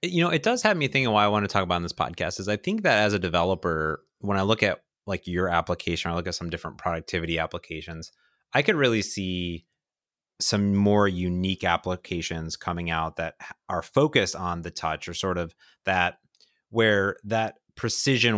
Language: English